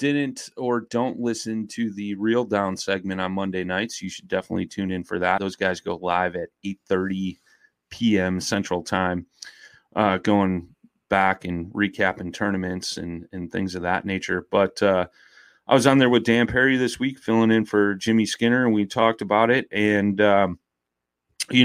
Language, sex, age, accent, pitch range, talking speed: English, male, 30-49, American, 95-110 Hz, 175 wpm